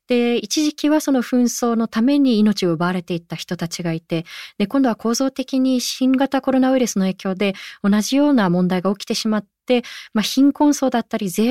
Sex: female